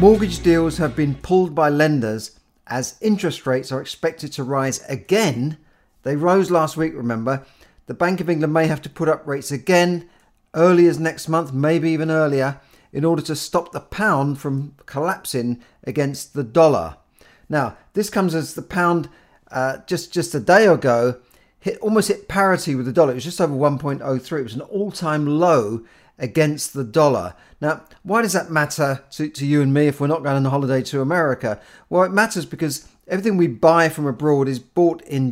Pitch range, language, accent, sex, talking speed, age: 135-170 Hz, English, British, male, 190 wpm, 40-59